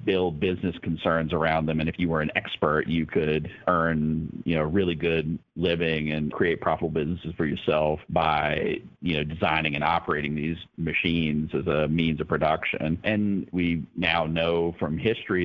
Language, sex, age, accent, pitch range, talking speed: English, male, 50-69, American, 80-90 Hz, 170 wpm